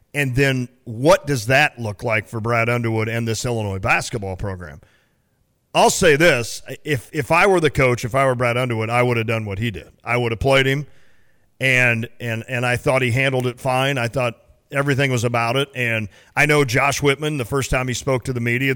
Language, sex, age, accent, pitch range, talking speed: English, male, 40-59, American, 120-150 Hz, 220 wpm